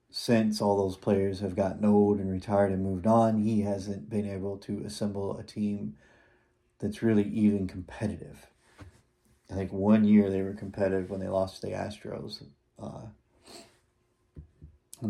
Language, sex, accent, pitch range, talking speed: English, male, American, 95-105 Hz, 150 wpm